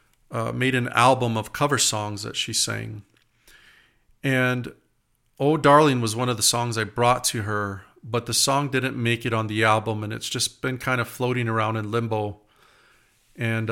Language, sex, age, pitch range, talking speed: English, male, 40-59, 110-130 Hz, 185 wpm